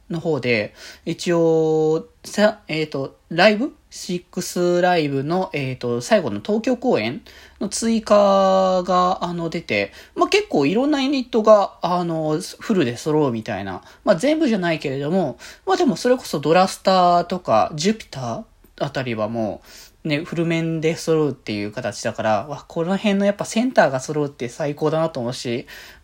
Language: Japanese